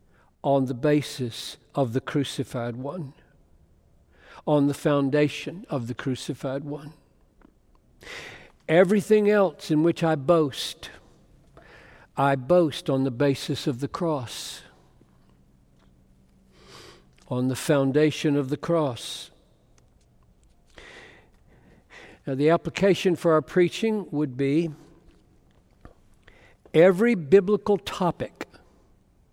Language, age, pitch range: English, 60-79, 125-175 Hz